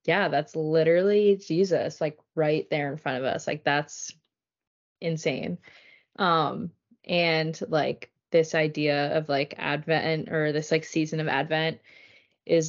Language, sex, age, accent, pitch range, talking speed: English, female, 20-39, American, 150-165 Hz, 135 wpm